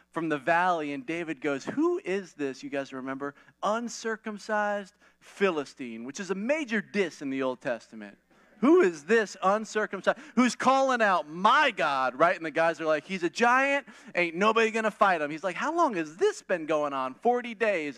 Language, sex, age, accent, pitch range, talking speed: English, male, 30-49, American, 175-270 Hz, 190 wpm